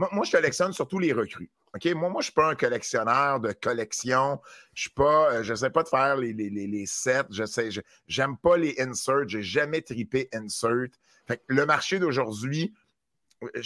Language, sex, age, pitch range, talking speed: French, male, 50-69, 110-145 Hz, 220 wpm